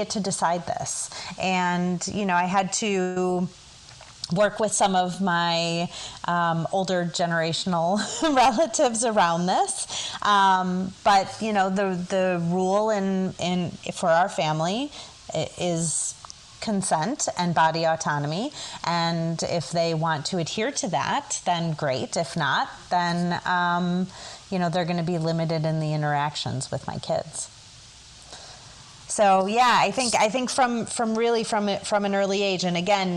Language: English